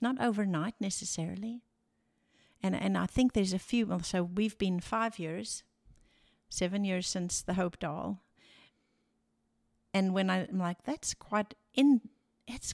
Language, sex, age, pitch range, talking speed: English, female, 60-79, 175-215 Hz, 135 wpm